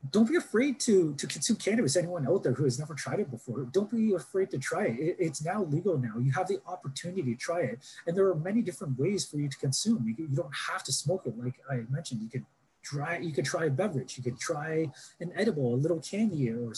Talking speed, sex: 260 wpm, male